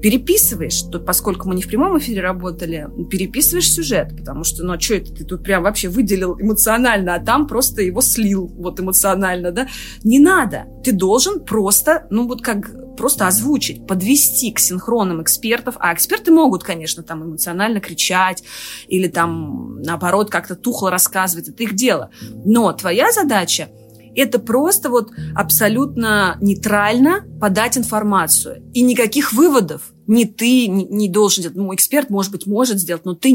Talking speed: 155 wpm